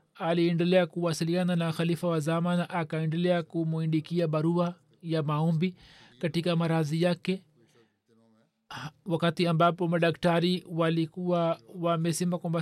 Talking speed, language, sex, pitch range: 100 wpm, Swahili, male, 165-180 Hz